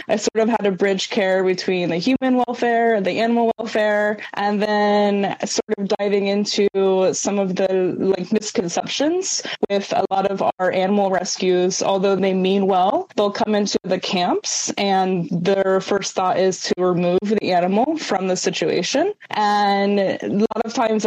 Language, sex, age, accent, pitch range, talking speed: English, female, 20-39, American, 185-220 Hz, 170 wpm